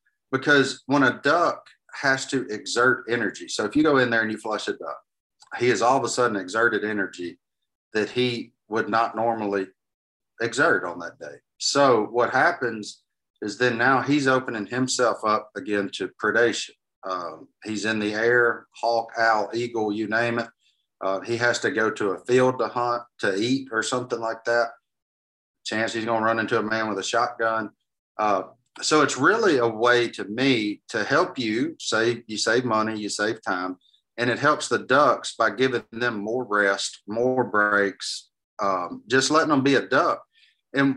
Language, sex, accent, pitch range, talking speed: English, male, American, 105-125 Hz, 185 wpm